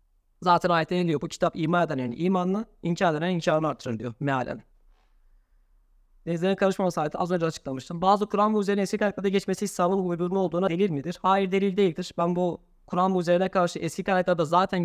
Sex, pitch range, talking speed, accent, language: male, 165-215 Hz, 180 wpm, native, Turkish